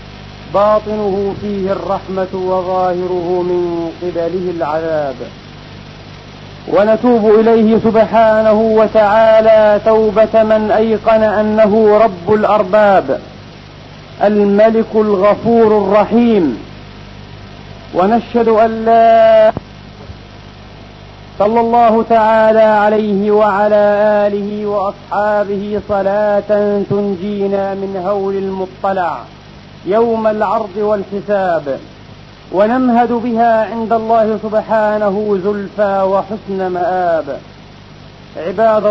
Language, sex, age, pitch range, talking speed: Arabic, male, 40-59, 195-225 Hz, 70 wpm